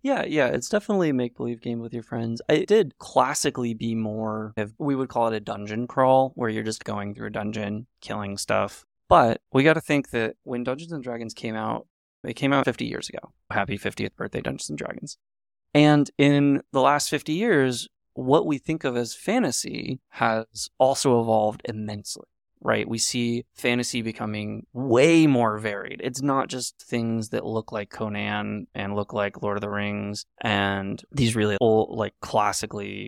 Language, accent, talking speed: English, American, 180 wpm